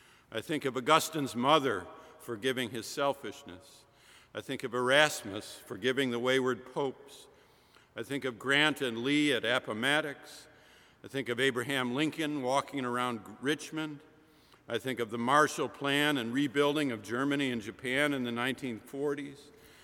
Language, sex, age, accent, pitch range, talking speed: English, male, 50-69, American, 120-145 Hz, 140 wpm